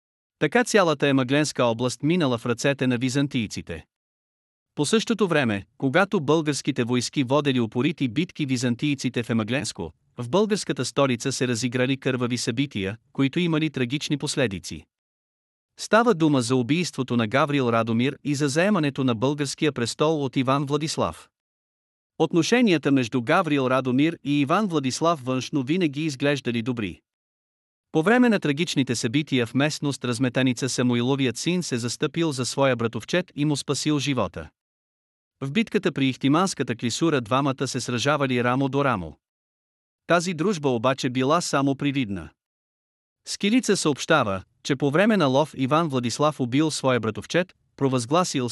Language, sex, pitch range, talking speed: Bulgarian, male, 125-155 Hz, 135 wpm